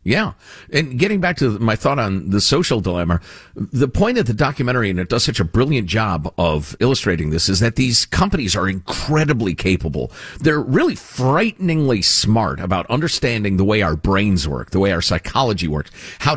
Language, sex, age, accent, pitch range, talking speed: English, male, 50-69, American, 95-140 Hz, 185 wpm